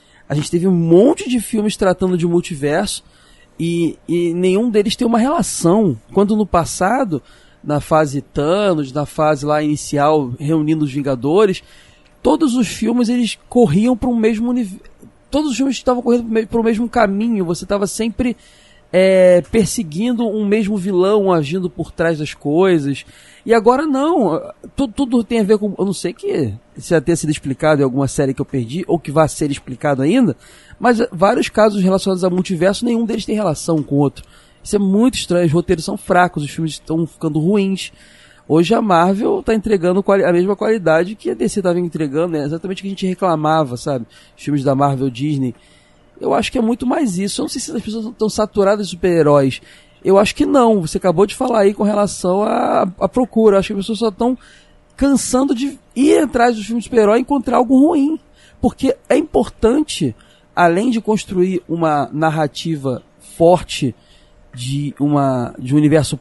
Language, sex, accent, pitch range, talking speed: Portuguese, male, Brazilian, 155-230 Hz, 190 wpm